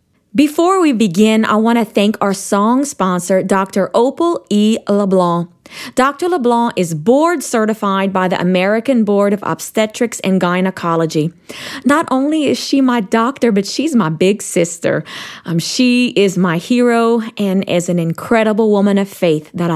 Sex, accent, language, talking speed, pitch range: female, American, English, 155 wpm, 185-250 Hz